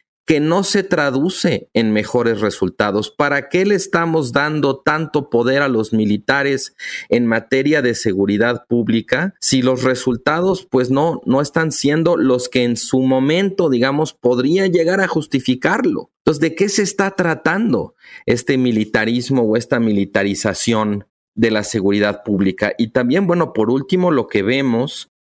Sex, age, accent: male, 40-59, Mexican